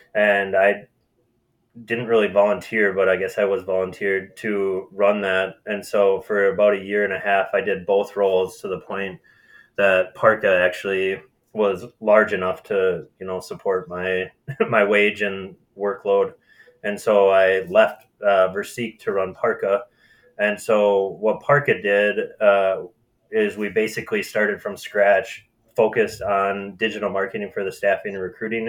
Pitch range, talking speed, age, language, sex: 95-115 Hz, 155 wpm, 20-39, English, male